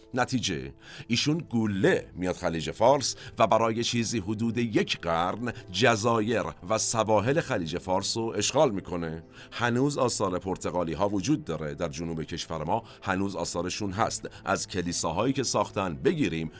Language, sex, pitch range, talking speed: Persian, male, 90-120 Hz, 135 wpm